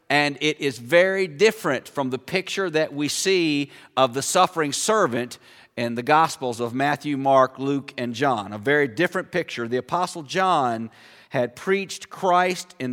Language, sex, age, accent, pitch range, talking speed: English, male, 50-69, American, 135-185 Hz, 165 wpm